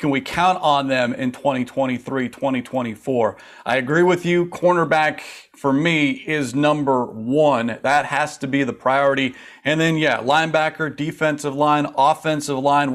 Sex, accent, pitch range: male, American, 135-160 Hz